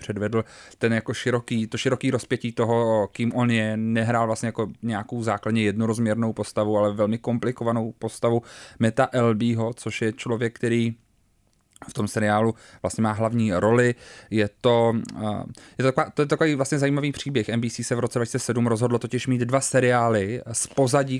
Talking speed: 175 wpm